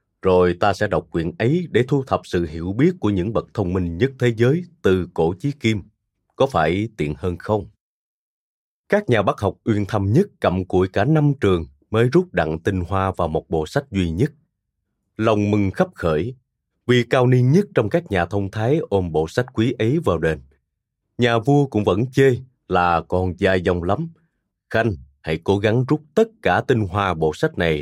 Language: Vietnamese